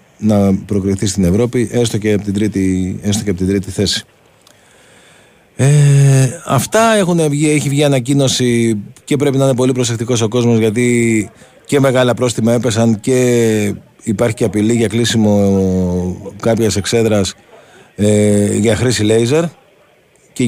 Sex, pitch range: male, 105-135 Hz